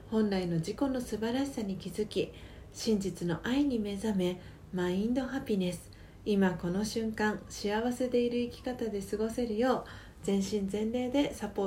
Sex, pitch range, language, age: female, 175-235 Hz, Japanese, 40-59